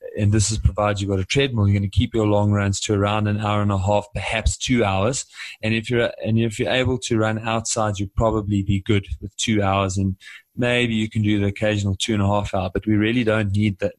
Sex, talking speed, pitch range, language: male, 260 wpm, 100-110 Hz, English